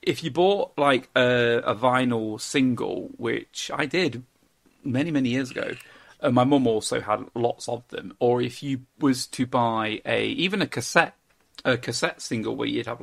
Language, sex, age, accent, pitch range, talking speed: English, male, 40-59, British, 120-140 Hz, 180 wpm